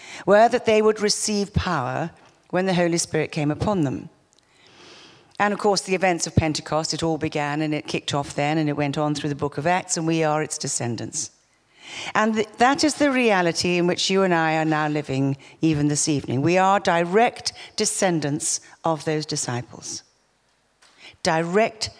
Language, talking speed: English, 180 wpm